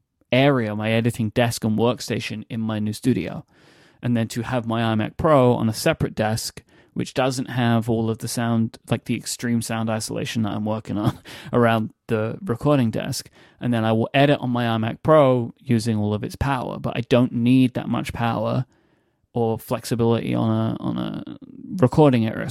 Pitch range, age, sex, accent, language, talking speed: 115-135 Hz, 30-49, male, British, English, 185 wpm